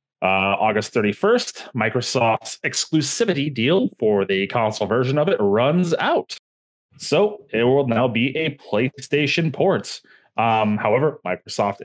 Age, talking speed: 20-39, 125 wpm